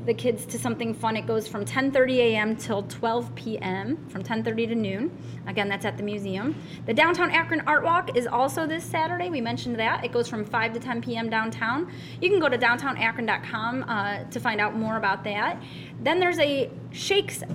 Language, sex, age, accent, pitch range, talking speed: English, female, 20-39, American, 210-265 Hz, 210 wpm